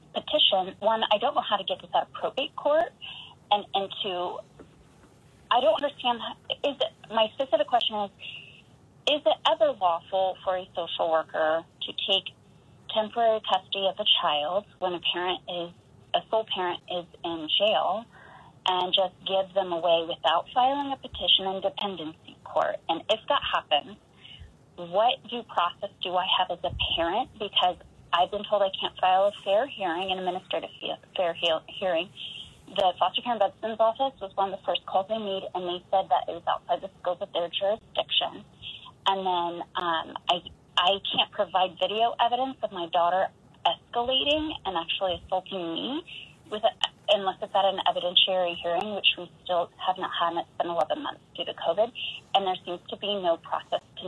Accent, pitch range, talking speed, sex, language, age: American, 175-220 Hz, 180 wpm, female, English, 30-49